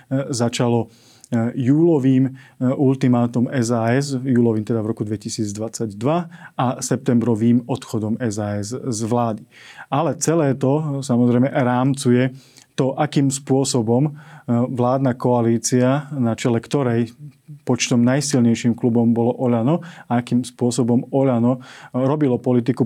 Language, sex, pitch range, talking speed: Slovak, male, 120-135 Hz, 100 wpm